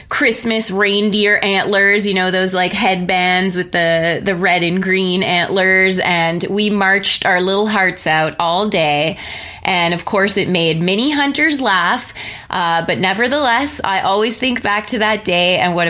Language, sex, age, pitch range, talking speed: English, female, 20-39, 170-210 Hz, 165 wpm